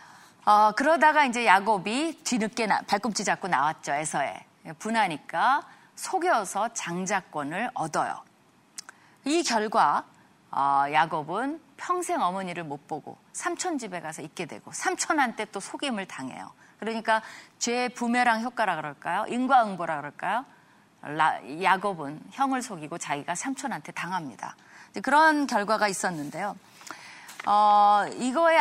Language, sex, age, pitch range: Korean, female, 30-49, 200-310 Hz